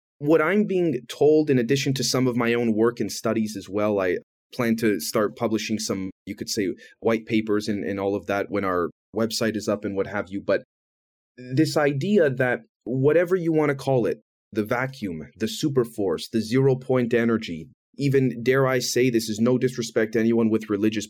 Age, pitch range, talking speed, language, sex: 30-49, 110-135 Hz, 200 wpm, English, male